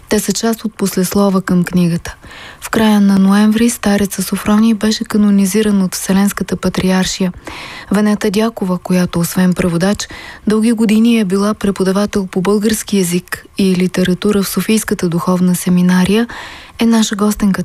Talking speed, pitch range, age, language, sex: 135 wpm, 195-225 Hz, 20-39, Bulgarian, female